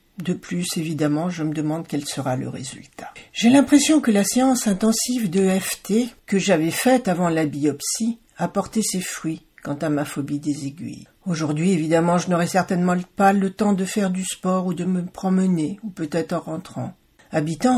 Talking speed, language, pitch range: 185 wpm, French, 150-200 Hz